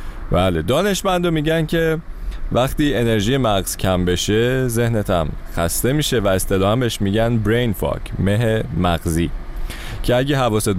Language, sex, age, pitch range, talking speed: Persian, male, 30-49, 90-120 Hz, 120 wpm